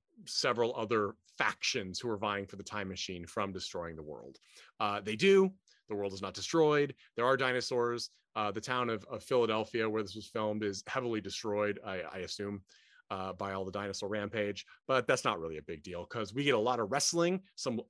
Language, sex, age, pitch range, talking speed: English, male, 30-49, 100-130 Hz, 210 wpm